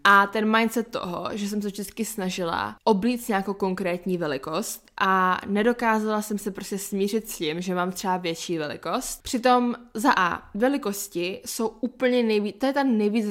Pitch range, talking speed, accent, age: 200-240 Hz, 165 wpm, native, 20-39